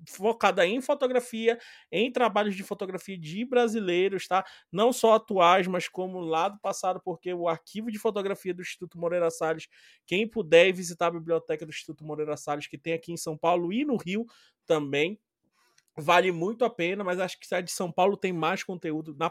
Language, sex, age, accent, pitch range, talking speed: Portuguese, male, 20-39, Brazilian, 165-200 Hz, 190 wpm